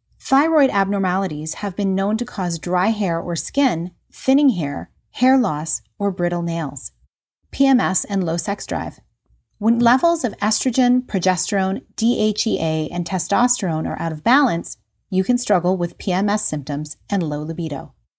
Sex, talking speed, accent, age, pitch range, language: female, 145 wpm, American, 30-49, 170-225 Hz, English